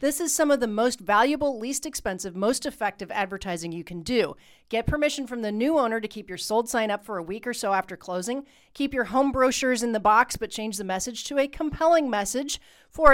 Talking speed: 230 wpm